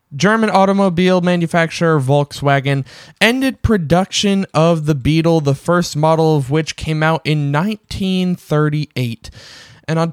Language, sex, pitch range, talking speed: English, male, 135-180 Hz, 120 wpm